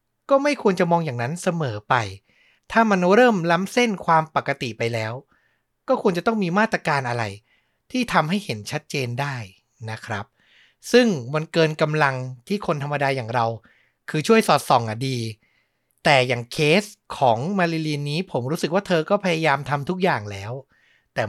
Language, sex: Thai, male